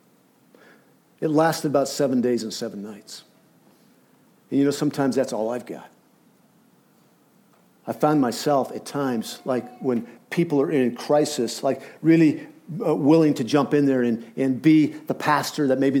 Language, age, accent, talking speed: English, 50-69, American, 155 wpm